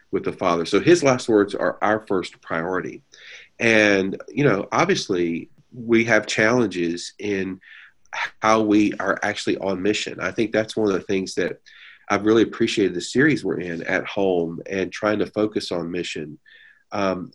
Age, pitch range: 40-59, 95-110 Hz